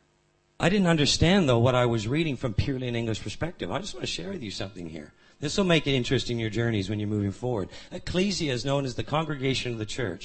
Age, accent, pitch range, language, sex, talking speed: 40-59, American, 105-140 Hz, English, male, 245 wpm